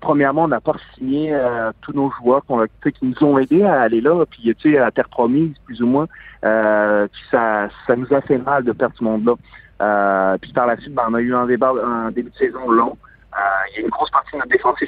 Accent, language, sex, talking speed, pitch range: French, French, male, 260 wpm, 115-145 Hz